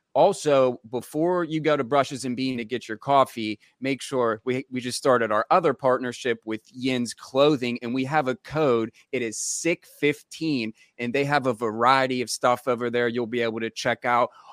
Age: 30-49